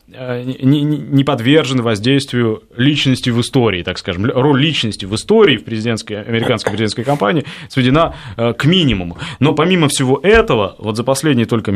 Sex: male